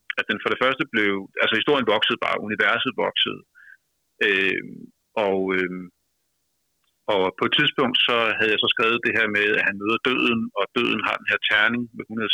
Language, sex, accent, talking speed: Danish, male, native, 190 wpm